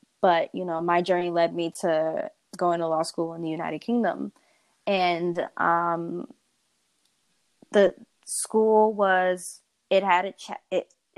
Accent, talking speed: American, 135 wpm